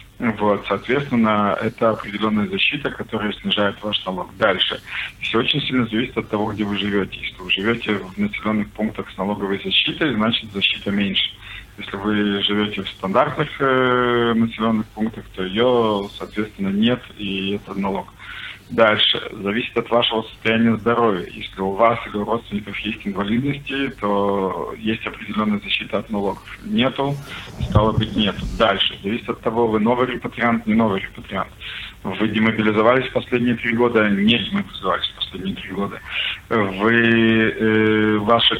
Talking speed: 145 wpm